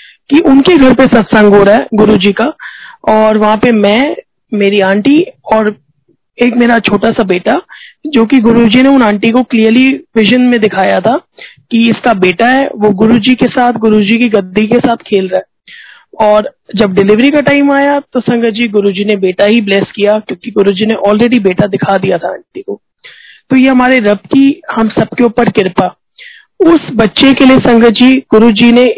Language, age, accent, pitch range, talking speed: Hindi, 20-39, native, 215-260 Hz, 195 wpm